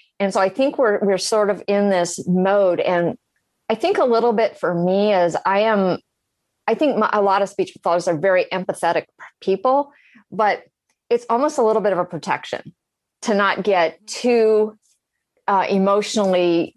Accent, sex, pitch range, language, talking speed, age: American, female, 175-215 Hz, English, 175 wpm, 30-49